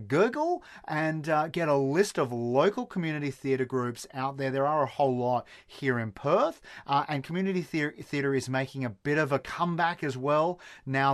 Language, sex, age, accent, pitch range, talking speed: English, male, 30-49, Australian, 120-150 Hz, 190 wpm